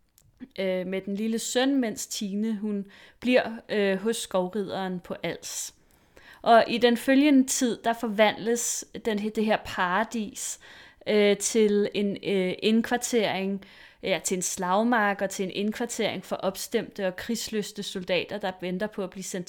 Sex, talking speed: female, 150 wpm